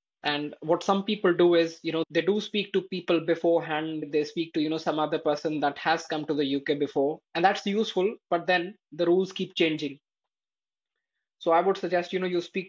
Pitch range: 155-185 Hz